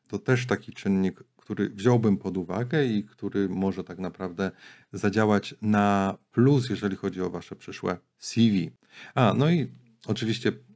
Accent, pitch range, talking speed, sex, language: Polish, 95-125 Hz, 145 wpm, male, English